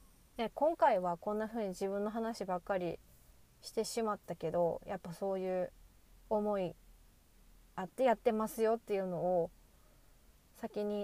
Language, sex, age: Japanese, female, 20-39